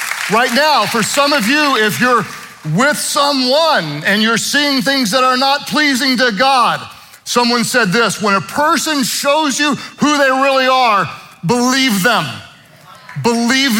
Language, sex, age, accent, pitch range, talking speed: English, male, 50-69, American, 160-235 Hz, 150 wpm